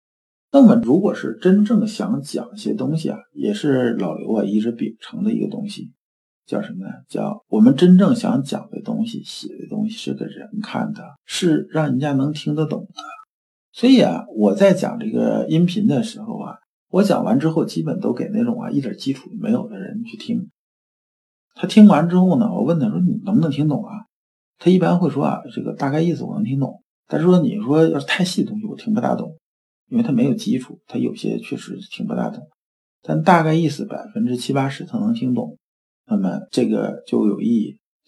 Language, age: Chinese, 50-69